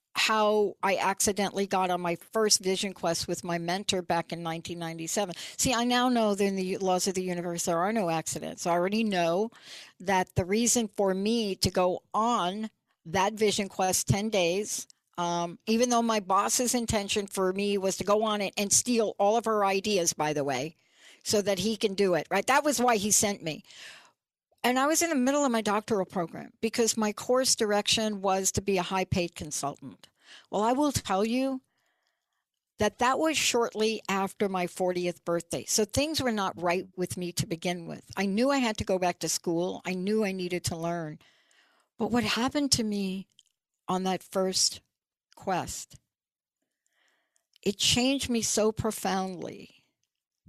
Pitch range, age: 180-225 Hz, 60-79